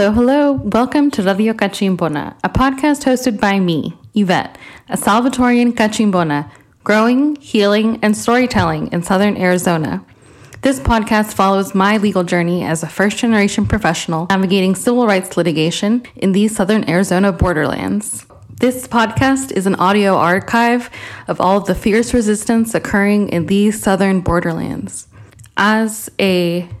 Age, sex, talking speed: 10-29, female, 140 wpm